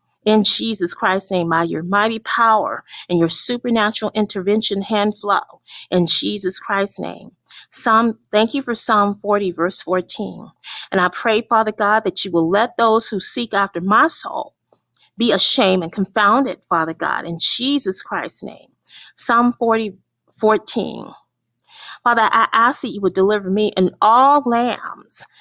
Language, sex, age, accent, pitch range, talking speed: English, female, 40-59, American, 190-225 Hz, 155 wpm